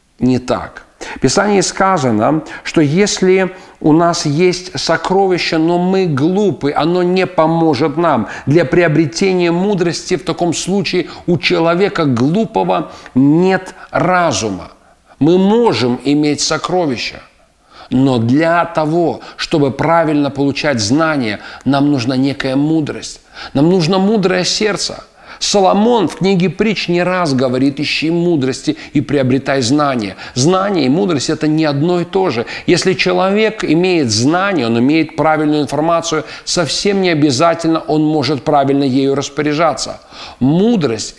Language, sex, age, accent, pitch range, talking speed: Russian, male, 50-69, native, 145-180 Hz, 125 wpm